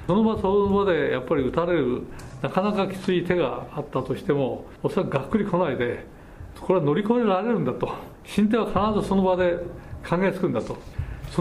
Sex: male